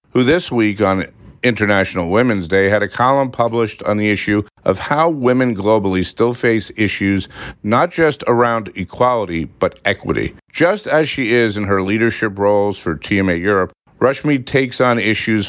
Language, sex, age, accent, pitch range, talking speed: English, male, 50-69, American, 95-120 Hz, 165 wpm